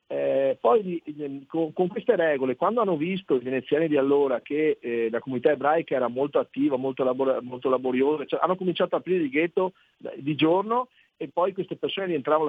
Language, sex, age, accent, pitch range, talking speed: Italian, male, 50-69, native, 130-190 Hz, 185 wpm